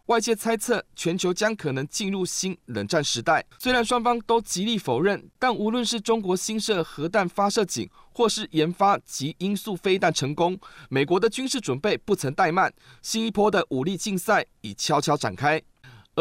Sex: male